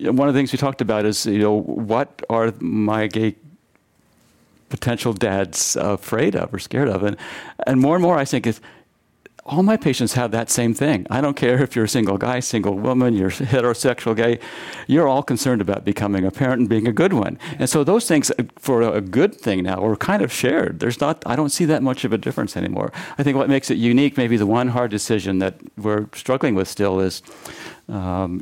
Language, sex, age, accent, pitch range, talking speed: English, male, 50-69, American, 100-125 Hz, 220 wpm